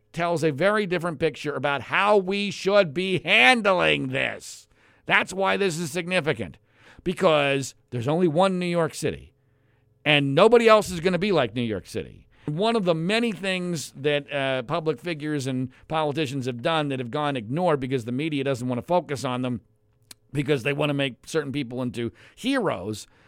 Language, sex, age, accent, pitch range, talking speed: English, male, 50-69, American, 130-180 Hz, 180 wpm